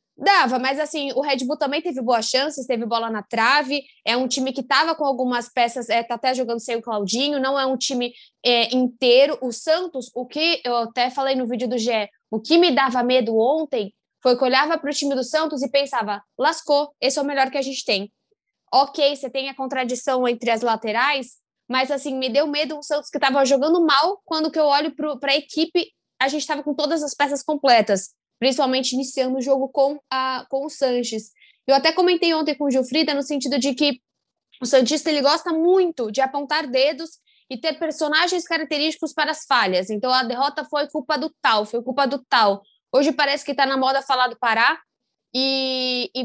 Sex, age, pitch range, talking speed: female, 10-29, 250-295 Hz, 205 wpm